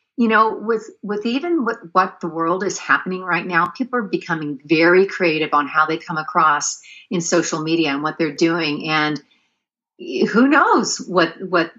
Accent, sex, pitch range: American, female, 165-210 Hz